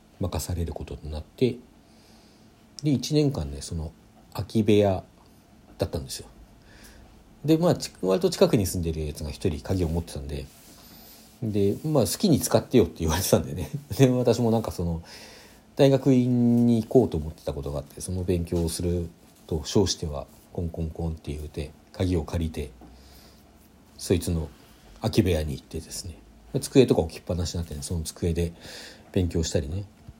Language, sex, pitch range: Japanese, male, 80-115 Hz